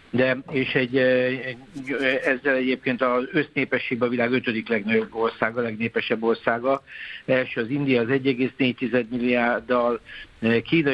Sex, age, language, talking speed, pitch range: male, 60-79, Hungarian, 125 wpm, 120-135 Hz